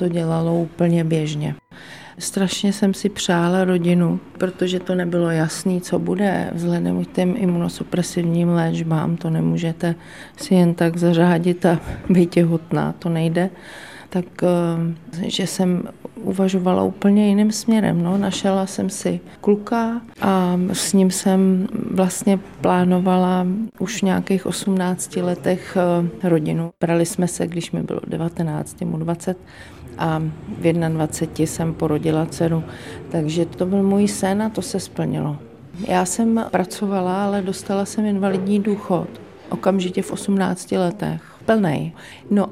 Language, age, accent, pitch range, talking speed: Czech, 40-59, native, 170-200 Hz, 130 wpm